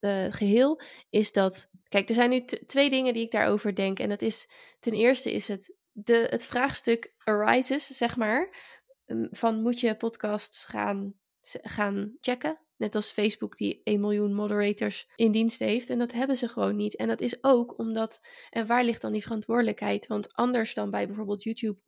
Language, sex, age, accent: Dutch, female, 20-39, Dutch